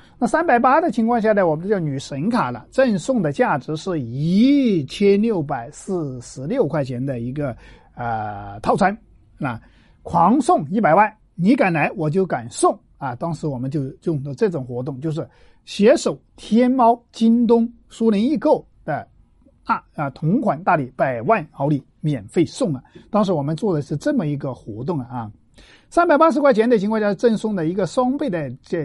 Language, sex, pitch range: Chinese, male, 145-230 Hz